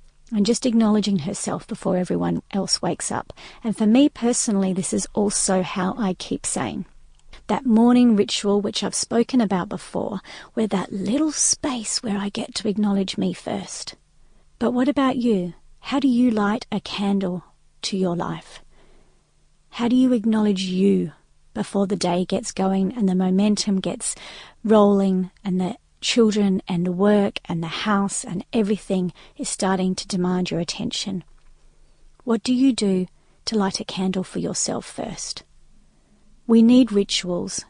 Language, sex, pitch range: English, female, 190-225 Hz